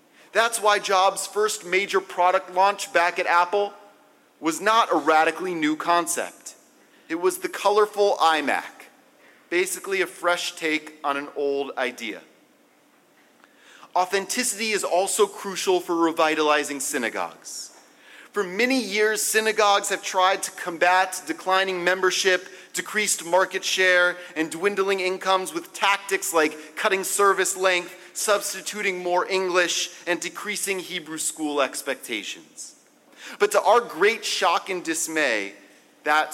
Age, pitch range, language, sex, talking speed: 30-49, 175-210 Hz, English, male, 120 wpm